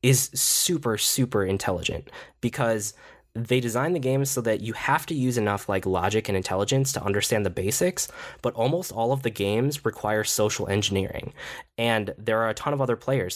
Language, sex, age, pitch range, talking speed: English, male, 10-29, 100-130 Hz, 185 wpm